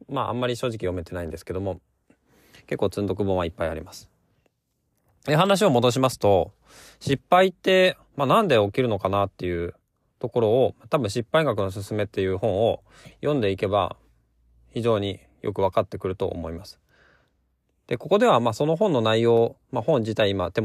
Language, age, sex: Japanese, 20-39, male